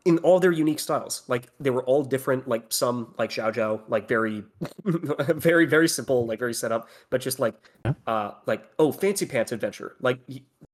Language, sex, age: English, male, 20-39